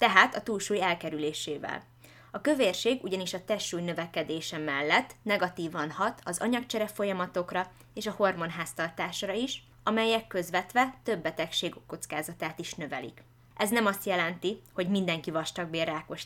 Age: 20-39